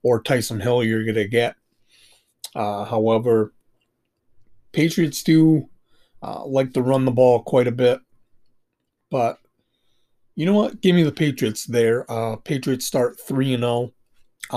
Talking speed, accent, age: 130 wpm, American, 30-49